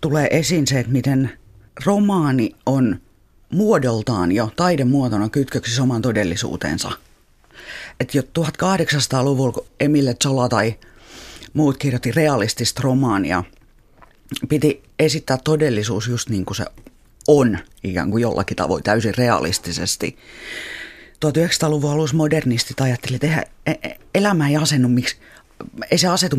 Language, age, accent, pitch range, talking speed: Finnish, 30-49, native, 120-150 Hz, 115 wpm